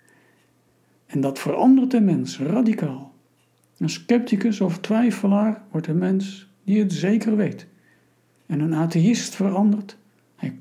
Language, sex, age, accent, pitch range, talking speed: Dutch, male, 60-79, Dutch, 140-200 Hz, 125 wpm